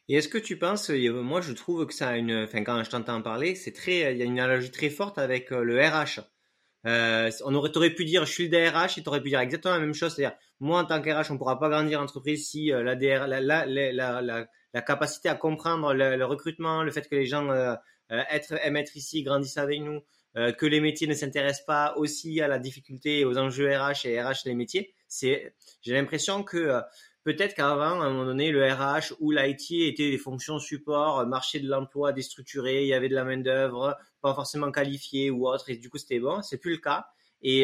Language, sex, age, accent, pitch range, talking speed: French, male, 20-39, French, 135-155 Hz, 240 wpm